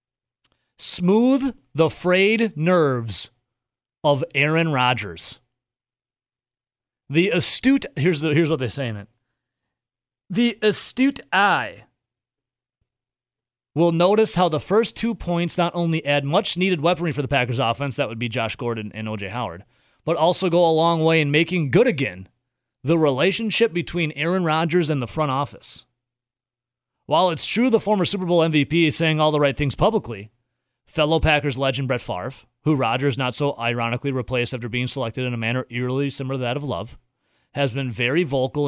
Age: 30-49